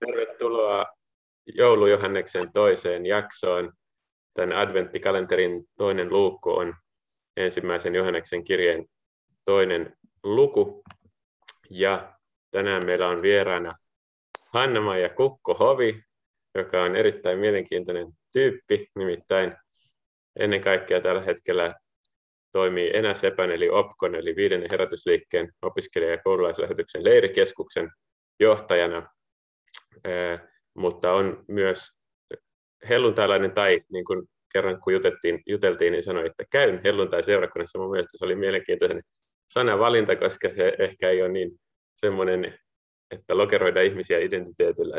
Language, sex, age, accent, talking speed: Finnish, male, 30-49, native, 105 wpm